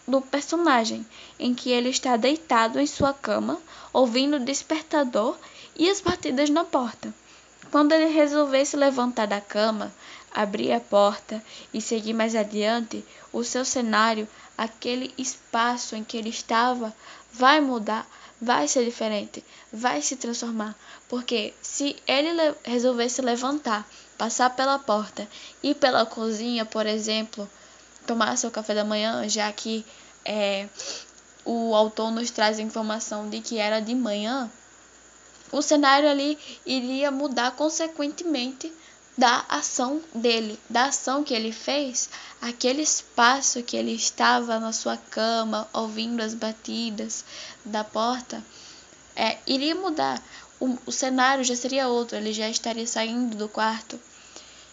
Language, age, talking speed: Portuguese, 10-29, 135 wpm